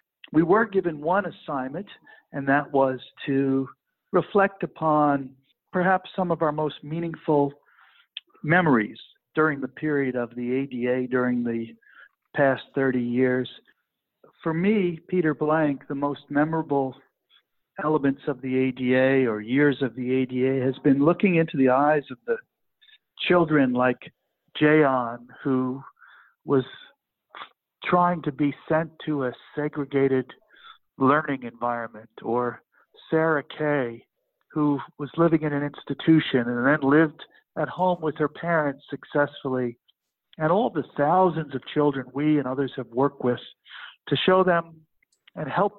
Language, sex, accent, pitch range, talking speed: English, male, American, 130-160 Hz, 135 wpm